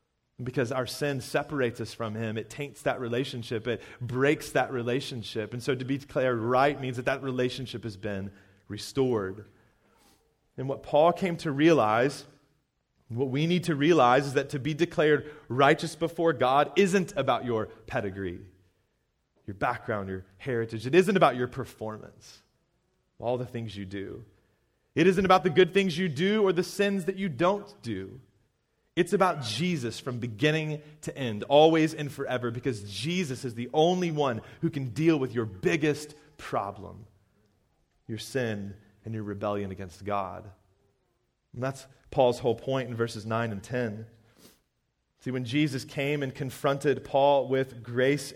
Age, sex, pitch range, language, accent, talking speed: 30-49, male, 110-150 Hz, English, American, 160 wpm